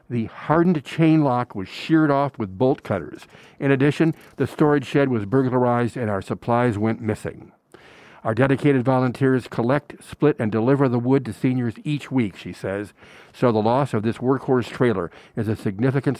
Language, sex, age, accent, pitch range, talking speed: English, male, 60-79, American, 110-135 Hz, 175 wpm